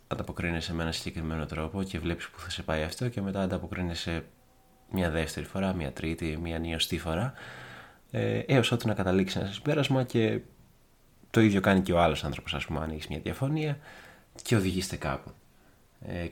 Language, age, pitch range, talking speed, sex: Greek, 20-39, 80-100 Hz, 170 wpm, male